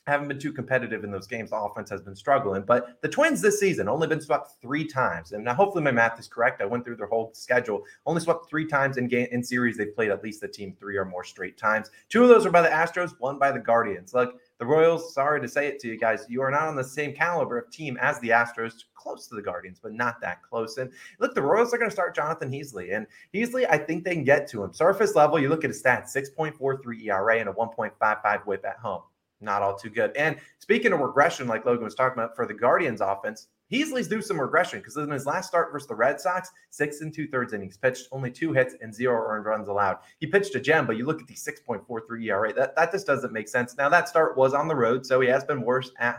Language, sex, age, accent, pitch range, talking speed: English, male, 30-49, American, 120-160 Hz, 265 wpm